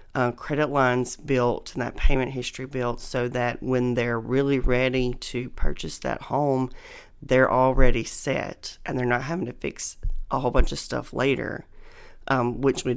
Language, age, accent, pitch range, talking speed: English, 40-59, American, 125-145 Hz, 170 wpm